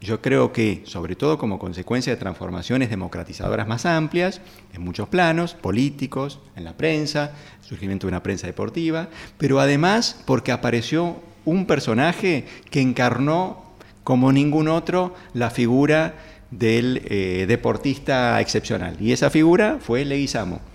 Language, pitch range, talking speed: Spanish, 105-160 Hz, 135 wpm